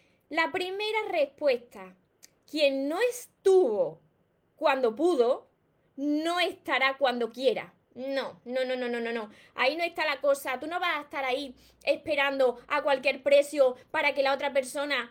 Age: 20-39